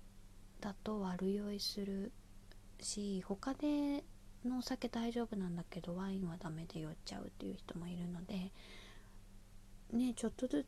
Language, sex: Japanese, female